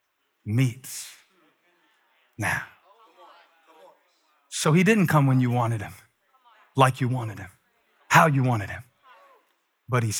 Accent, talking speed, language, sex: American, 120 wpm, English, male